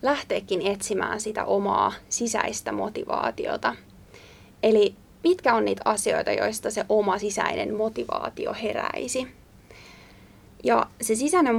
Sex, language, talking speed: female, Finnish, 105 wpm